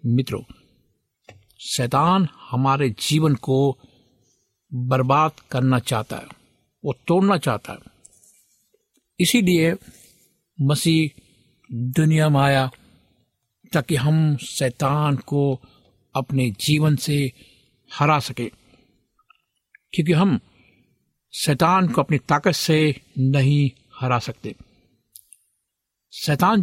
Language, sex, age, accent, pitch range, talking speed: Hindi, male, 60-79, native, 125-160 Hz, 85 wpm